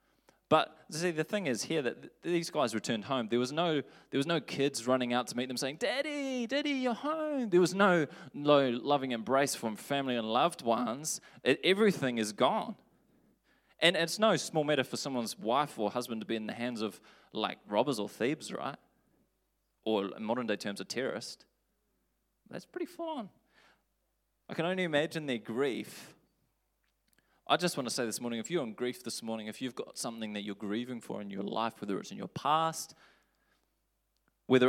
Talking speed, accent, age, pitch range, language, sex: 190 wpm, Australian, 20-39, 115-150 Hz, English, male